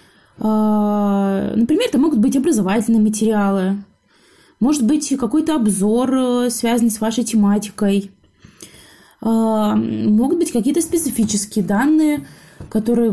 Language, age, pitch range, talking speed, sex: Russian, 20-39, 205-245 Hz, 90 wpm, female